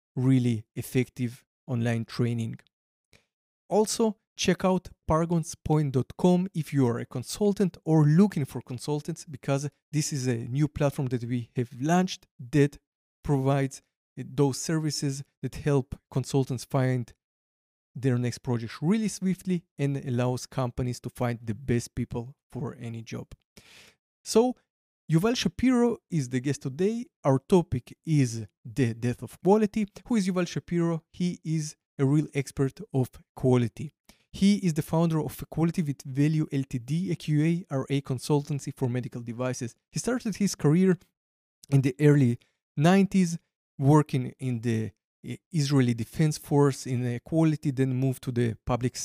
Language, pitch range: English, 125-160 Hz